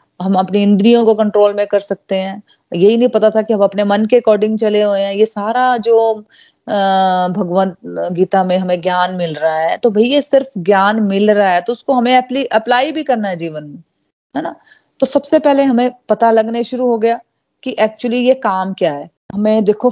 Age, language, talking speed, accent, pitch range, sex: 30-49, Hindi, 210 wpm, native, 195-245 Hz, female